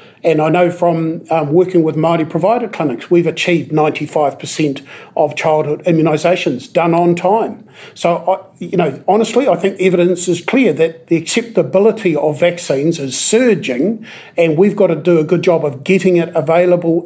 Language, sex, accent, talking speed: English, male, Australian, 165 wpm